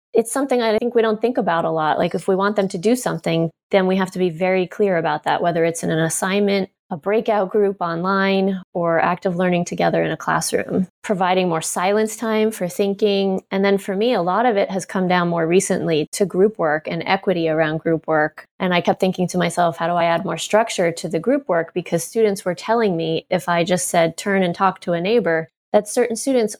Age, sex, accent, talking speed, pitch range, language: 20-39, female, American, 235 wpm, 170-200 Hz, English